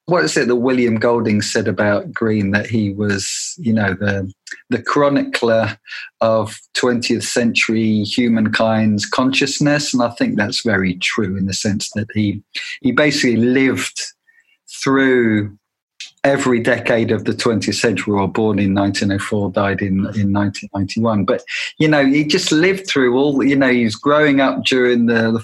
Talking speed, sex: 170 wpm, male